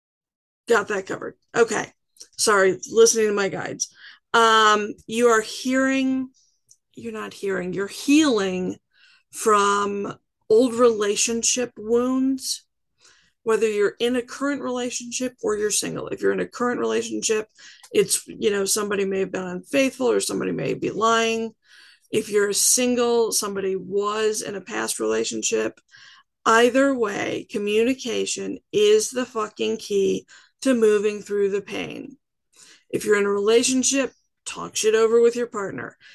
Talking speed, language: 135 wpm, English